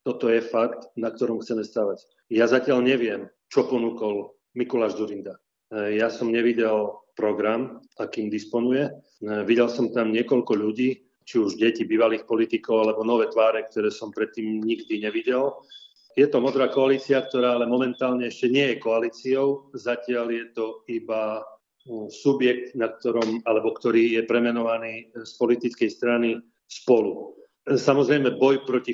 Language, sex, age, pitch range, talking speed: Slovak, male, 40-59, 115-130 Hz, 135 wpm